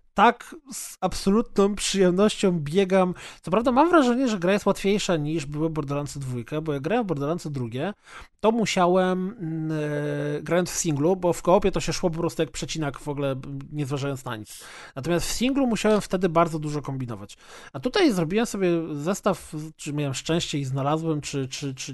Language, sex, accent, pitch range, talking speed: Polish, male, native, 150-185 Hz, 180 wpm